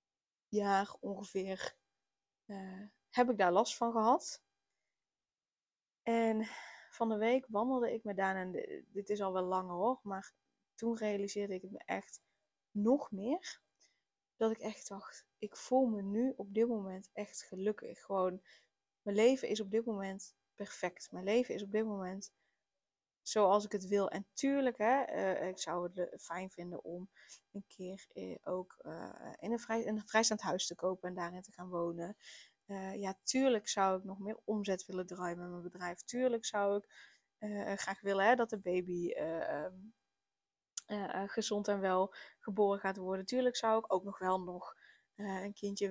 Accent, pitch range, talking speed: Dutch, 190-225 Hz, 170 wpm